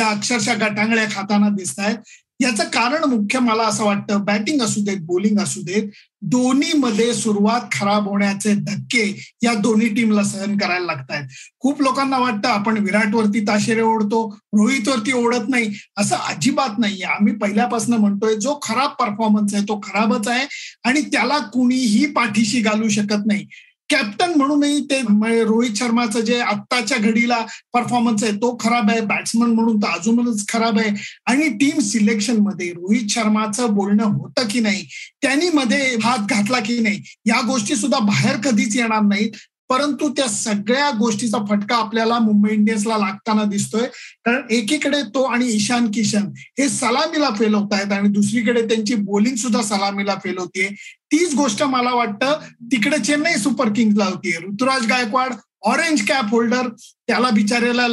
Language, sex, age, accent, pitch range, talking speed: Marathi, male, 50-69, native, 210-255 Hz, 125 wpm